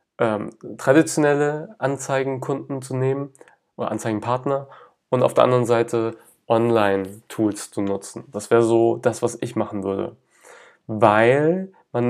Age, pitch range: 30-49, 115-135 Hz